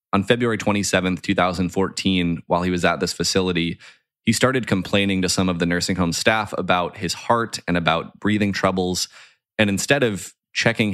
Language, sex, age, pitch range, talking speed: English, male, 20-39, 90-100 Hz, 170 wpm